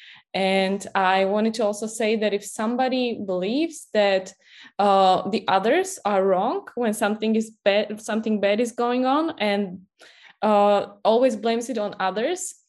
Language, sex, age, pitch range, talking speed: English, female, 20-39, 205-245 Hz, 150 wpm